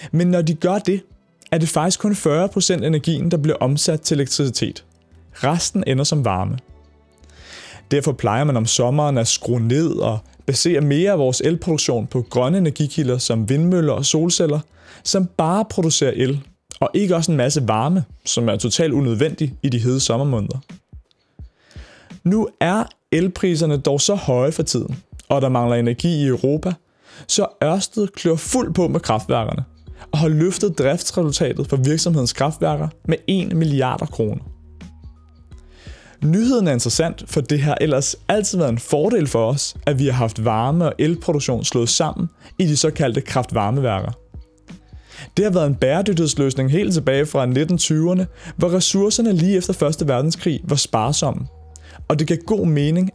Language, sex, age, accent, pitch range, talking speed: Danish, male, 30-49, native, 125-170 Hz, 155 wpm